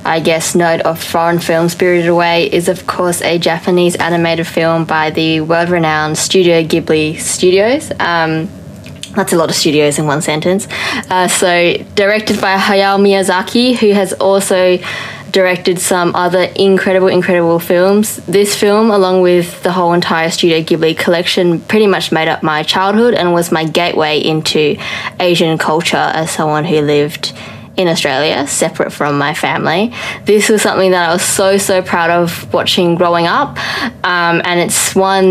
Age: 20-39